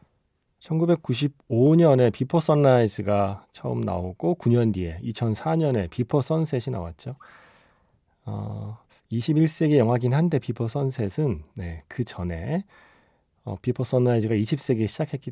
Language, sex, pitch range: Korean, male, 100-140 Hz